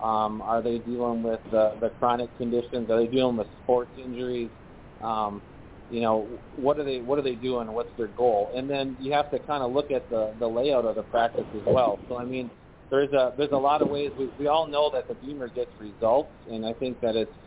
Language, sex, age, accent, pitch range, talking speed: English, male, 30-49, American, 115-135 Hz, 235 wpm